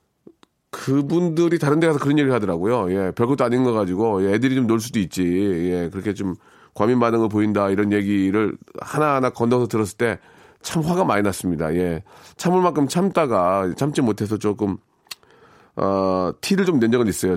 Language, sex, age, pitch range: Korean, male, 40-59, 100-155 Hz